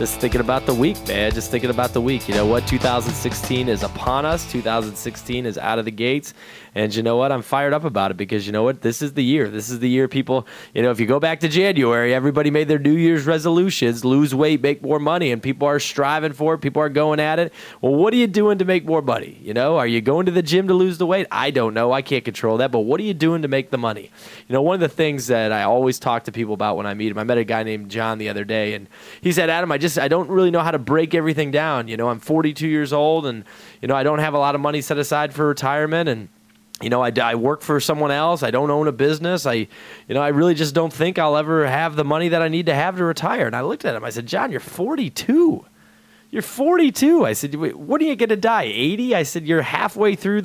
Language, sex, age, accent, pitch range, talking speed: English, male, 20-39, American, 125-170 Hz, 280 wpm